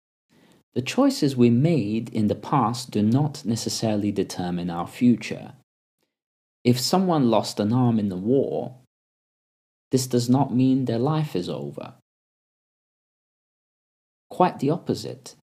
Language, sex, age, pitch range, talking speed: English, male, 40-59, 95-125 Hz, 125 wpm